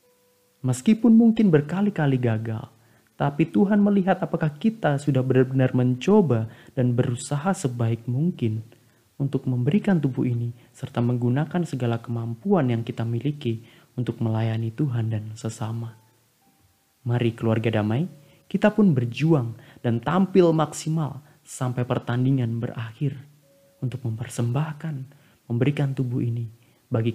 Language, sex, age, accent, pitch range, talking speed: Indonesian, male, 30-49, native, 115-135 Hz, 110 wpm